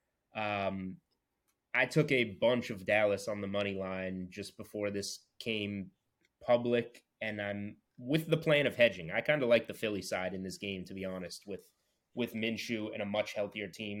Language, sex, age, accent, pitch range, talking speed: English, male, 20-39, American, 100-120 Hz, 190 wpm